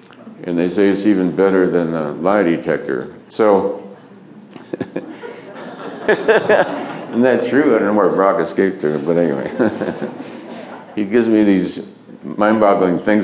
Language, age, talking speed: English, 60-79, 130 wpm